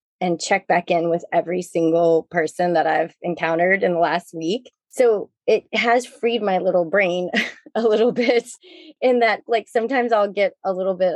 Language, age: English, 20-39